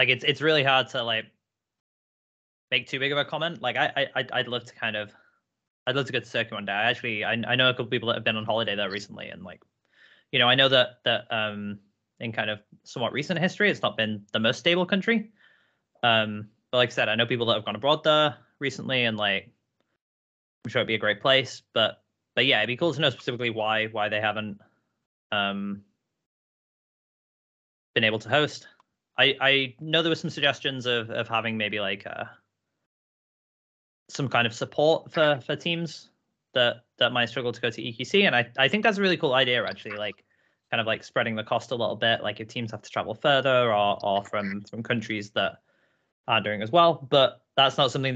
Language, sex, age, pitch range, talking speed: English, male, 20-39, 110-140 Hz, 220 wpm